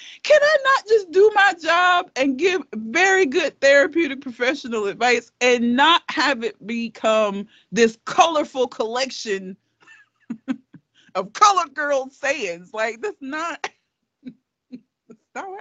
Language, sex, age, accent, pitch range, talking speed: English, female, 40-59, American, 235-380 Hz, 120 wpm